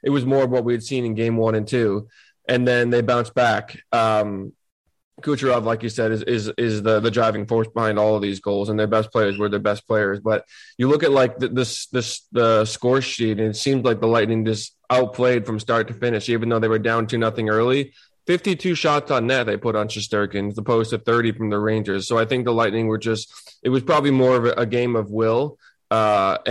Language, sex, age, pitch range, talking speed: English, male, 20-39, 110-125 Hz, 245 wpm